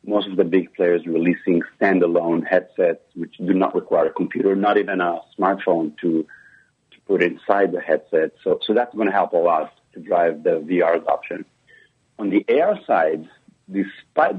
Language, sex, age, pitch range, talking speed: English, male, 50-69, 90-110 Hz, 170 wpm